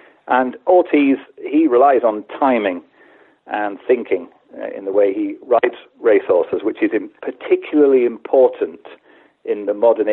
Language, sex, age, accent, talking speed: English, male, 40-59, British, 125 wpm